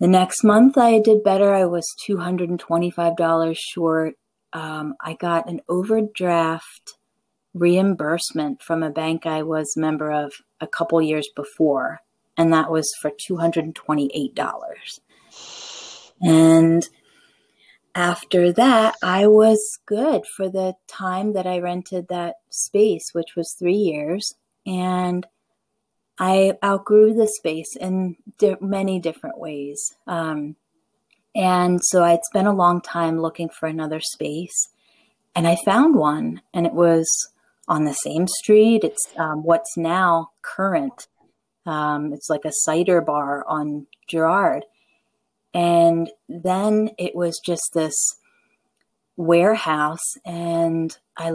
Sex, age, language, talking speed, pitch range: female, 30-49, English, 125 wpm, 160-200 Hz